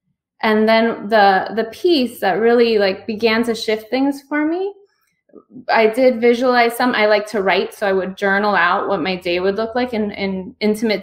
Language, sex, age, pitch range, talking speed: English, female, 20-39, 195-230 Hz, 195 wpm